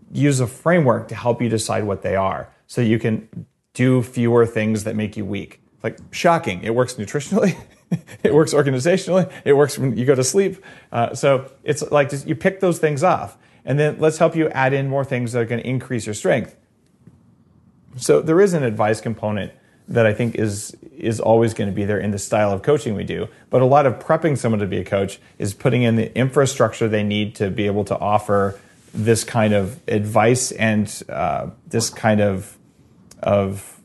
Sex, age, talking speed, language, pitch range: male, 30-49, 200 wpm, English, 105-130 Hz